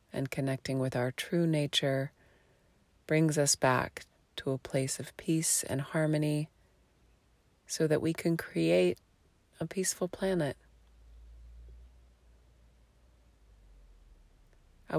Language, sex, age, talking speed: English, female, 30-49, 100 wpm